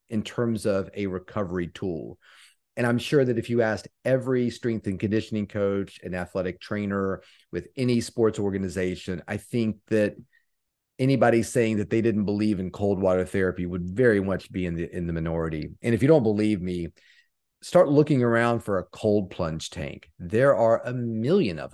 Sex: male